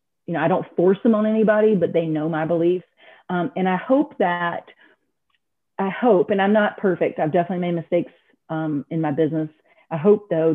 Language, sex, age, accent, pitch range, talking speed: English, female, 40-59, American, 165-205 Hz, 200 wpm